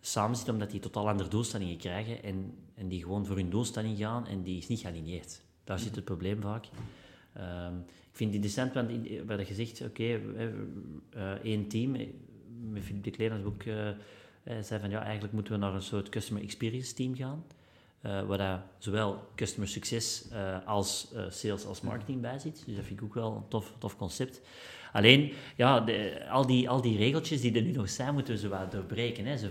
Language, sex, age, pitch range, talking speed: Dutch, male, 30-49, 100-125 Hz, 195 wpm